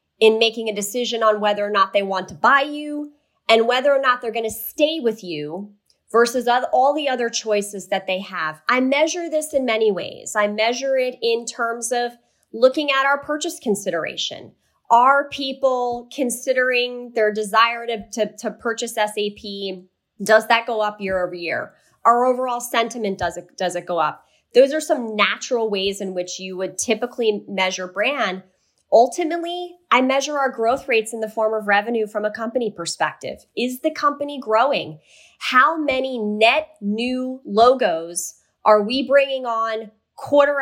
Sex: female